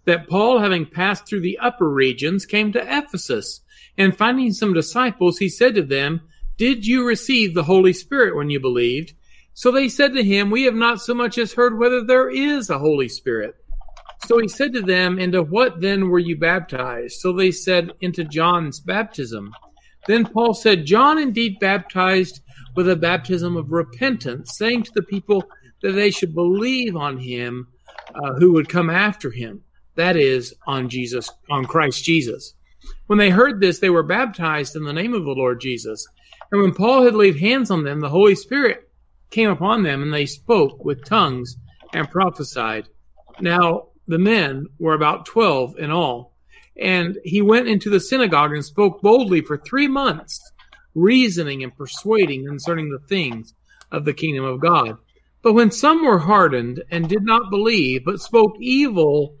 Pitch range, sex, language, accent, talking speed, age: 150-225 Hz, male, English, American, 175 wpm, 50-69